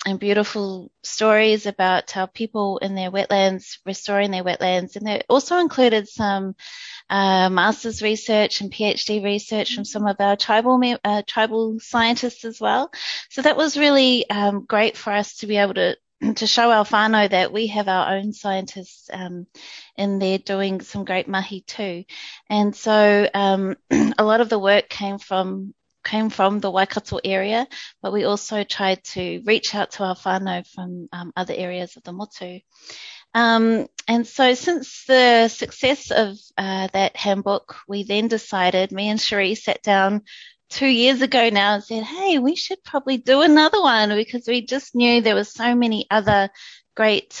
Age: 30-49